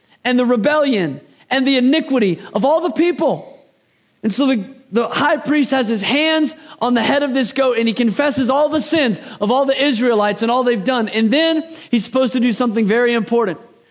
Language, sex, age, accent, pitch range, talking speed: English, male, 40-59, American, 230-280 Hz, 205 wpm